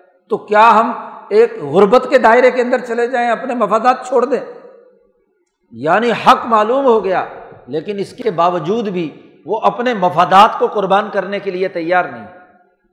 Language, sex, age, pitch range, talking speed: Urdu, male, 60-79, 185-235 Hz, 160 wpm